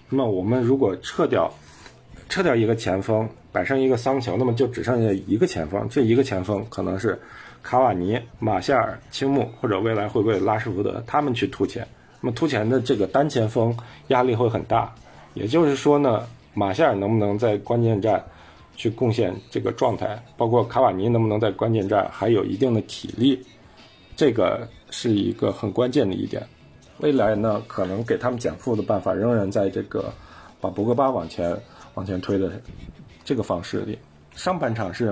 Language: Chinese